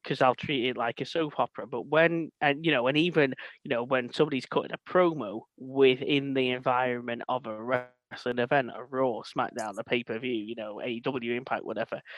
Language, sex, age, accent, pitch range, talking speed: English, male, 20-39, British, 125-165 Hz, 200 wpm